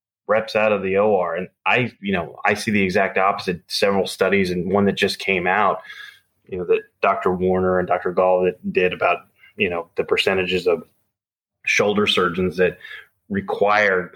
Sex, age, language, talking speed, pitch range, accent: male, 20-39, English, 175 wpm, 100-125 Hz, American